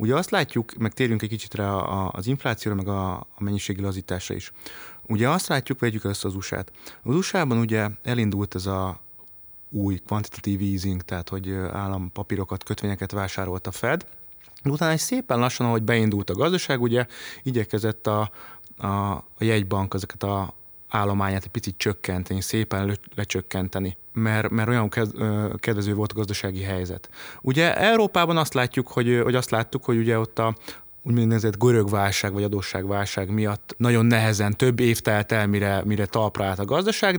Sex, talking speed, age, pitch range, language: male, 155 wpm, 20-39, 100-120 Hz, Hungarian